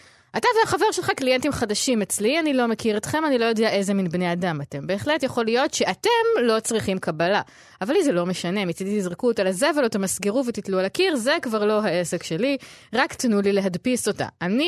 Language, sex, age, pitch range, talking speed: Hebrew, female, 20-39, 190-265 Hz, 205 wpm